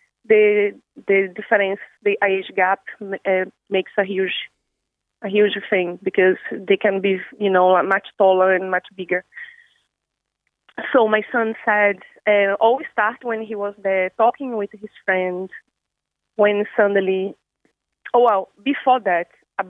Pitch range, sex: 195-245 Hz, female